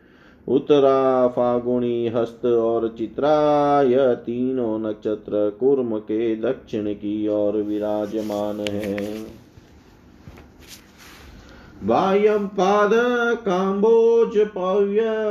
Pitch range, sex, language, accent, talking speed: 115-150 Hz, male, Hindi, native, 65 wpm